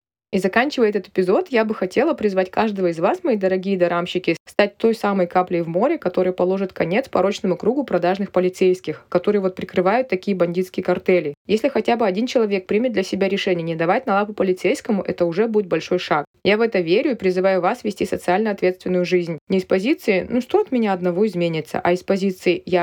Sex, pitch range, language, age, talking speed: female, 180-215 Hz, Russian, 20-39, 200 wpm